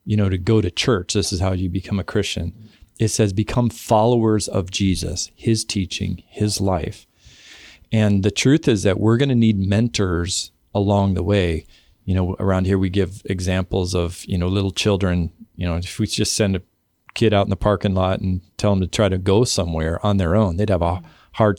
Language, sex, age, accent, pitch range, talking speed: English, male, 40-59, American, 95-115 Hz, 210 wpm